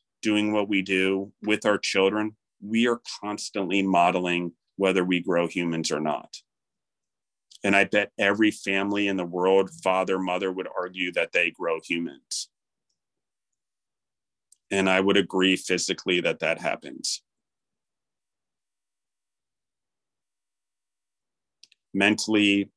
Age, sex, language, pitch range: 40-59, male, English, 85-100 Hz